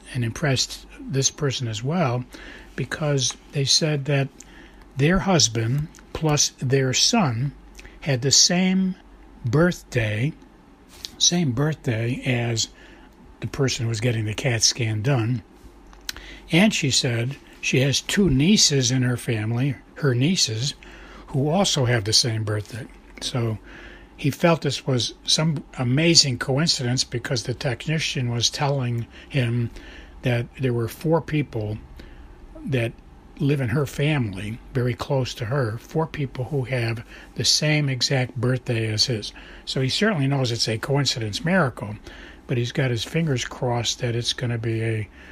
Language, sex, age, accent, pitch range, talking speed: English, male, 60-79, American, 115-145 Hz, 140 wpm